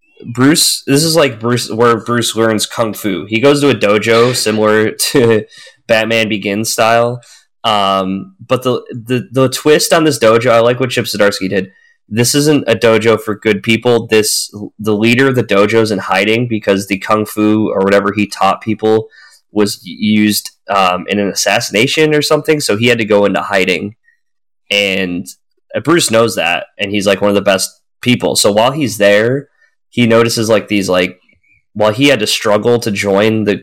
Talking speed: 185 wpm